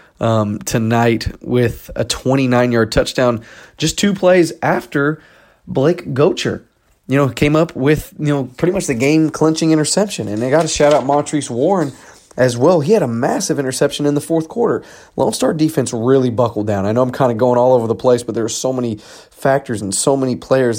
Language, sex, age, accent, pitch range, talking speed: English, male, 20-39, American, 115-140 Hz, 205 wpm